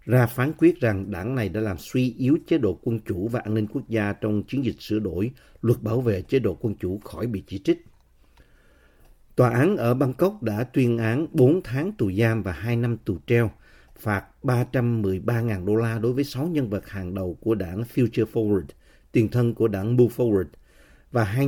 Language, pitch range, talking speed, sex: Vietnamese, 100-130 Hz, 205 wpm, male